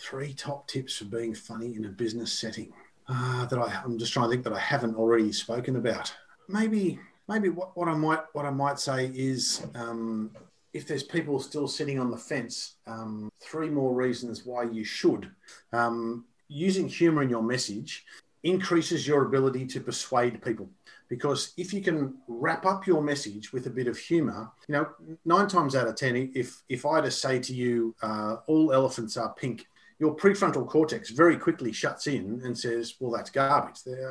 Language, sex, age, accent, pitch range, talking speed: English, male, 40-59, Australian, 120-170 Hz, 190 wpm